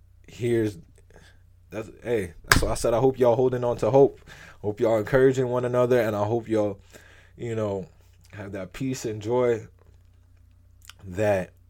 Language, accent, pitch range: English, American, 90-105 Hz